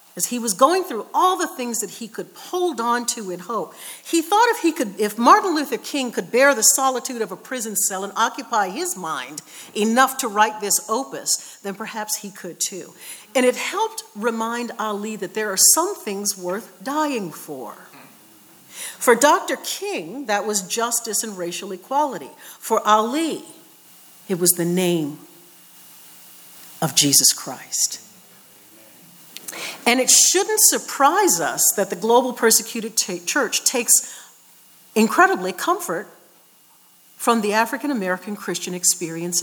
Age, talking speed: 50-69, 140 wpm